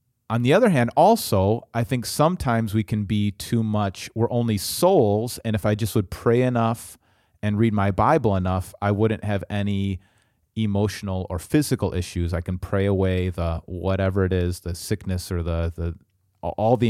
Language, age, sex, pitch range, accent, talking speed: English, 30-49, male, 95-120 Hz, American, 180 wpm